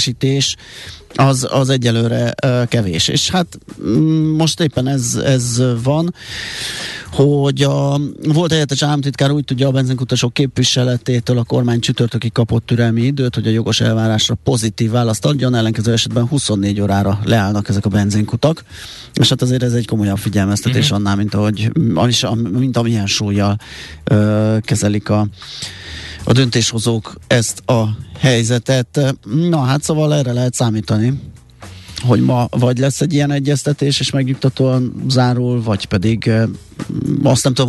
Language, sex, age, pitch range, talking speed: Hungarian, male, 30-49, 110-135 Hz, 135 wpm